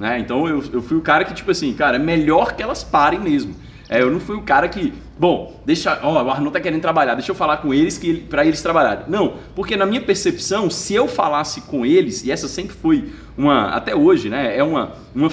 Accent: Brazilian